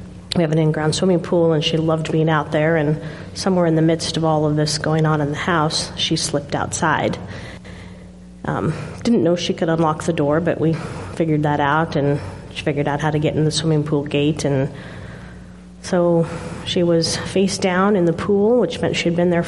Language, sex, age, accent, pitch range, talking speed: English, female, 30-49, American, 150-170 Hz, 215 wpm